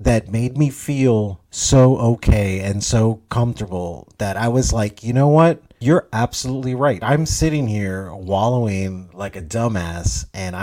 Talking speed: 150 wpm